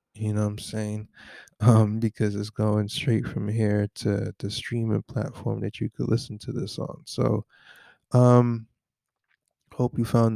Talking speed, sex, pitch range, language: 160 wpm, male, 105-120 Hz, English